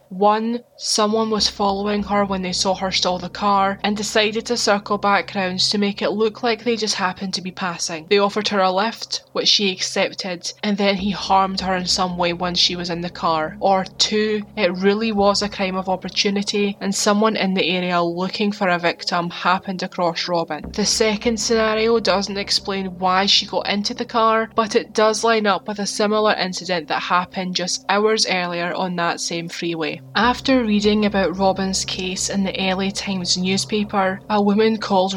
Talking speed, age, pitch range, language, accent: 195 wpm, 20-39, 180-210 Hz, English, British